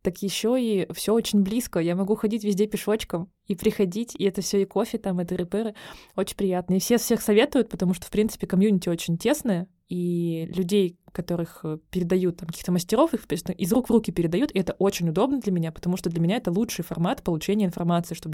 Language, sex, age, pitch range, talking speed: Russian, female, 20-39, 180-225 Hz, 210 wpm